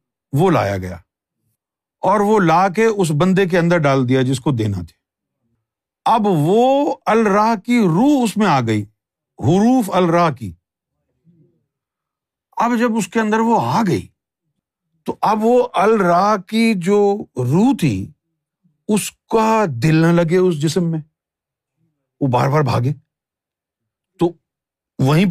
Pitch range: 130-185 Hz